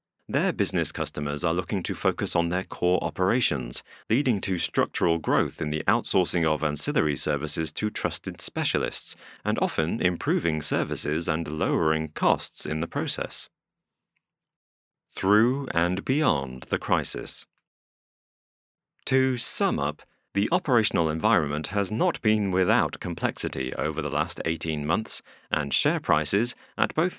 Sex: male